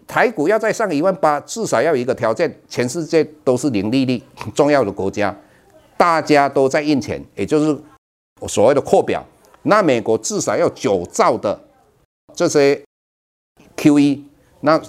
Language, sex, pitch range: Chinese, male, 105-150 Hz